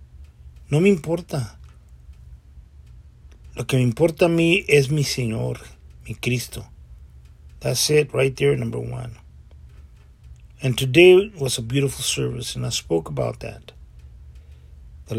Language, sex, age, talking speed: English, male, 40-59, 125 wpm